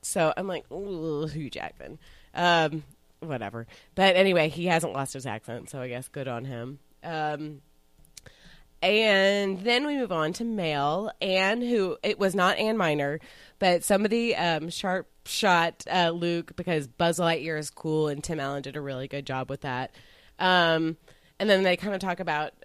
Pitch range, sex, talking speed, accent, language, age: 150-190 Hz, female, 175 wpm, American, English, 30-49